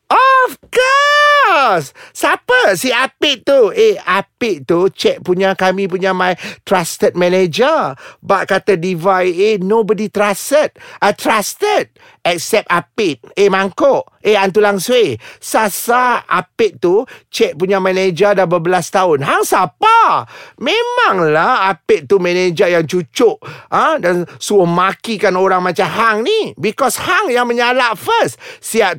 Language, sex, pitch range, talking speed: Malay, male, 190-285 Hz, 130 wpm